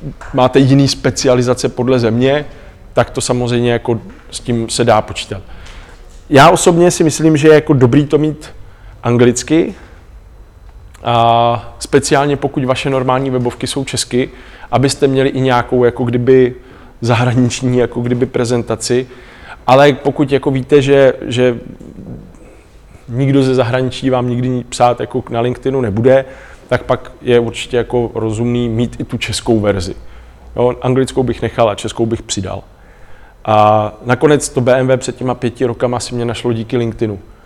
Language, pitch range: Czech, 115-130 Hz